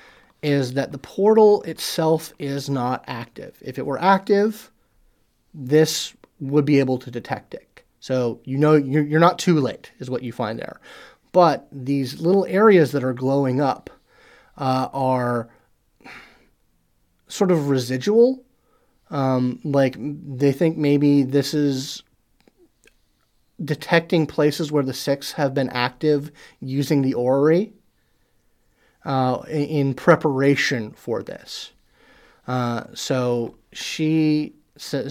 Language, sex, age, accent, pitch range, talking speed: English, male, 30-49, American, 135-165 Hz, 125 wpm